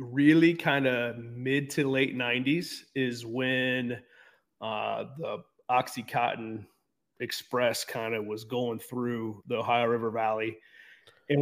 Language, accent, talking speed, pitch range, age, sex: English, American, 120 wpm, 120-145 Hz, 30-49, male